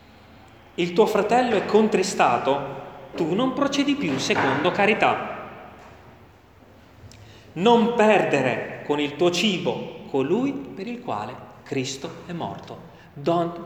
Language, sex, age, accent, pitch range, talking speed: Italian, male, 30-49, native, 140-225 Hz, 110 wpm